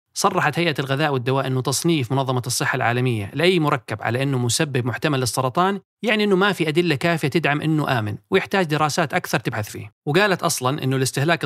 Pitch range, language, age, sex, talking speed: 130-170 Hz, Arabic, 30-49, male, 180 wpm